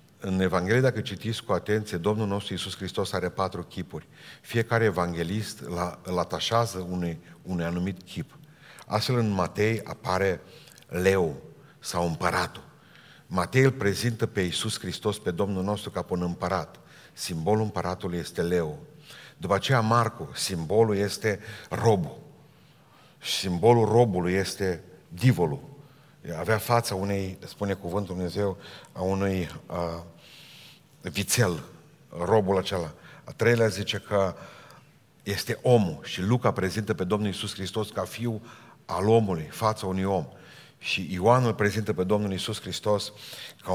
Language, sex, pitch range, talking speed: Romanian, male, 90-115 Hz, 130 wpm